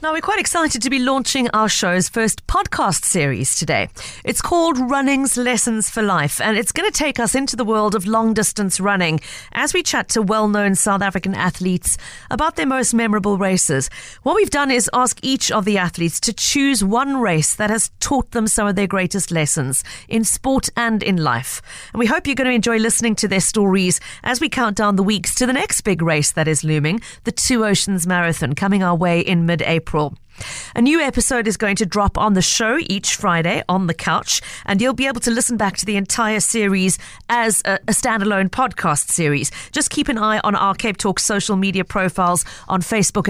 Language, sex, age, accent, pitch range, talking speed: English, female, 40-59, British, 175-235 Hz, 210 wpm